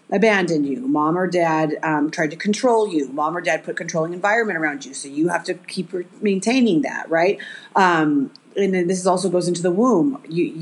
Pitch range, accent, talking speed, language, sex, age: 180-235 Hz, American, 215 wpm, English, female, 30-49